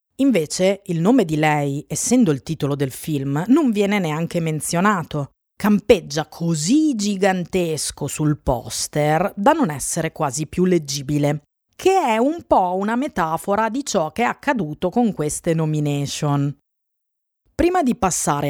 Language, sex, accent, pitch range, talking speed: Italian, female, native, 150-230 Hz, 135 wpm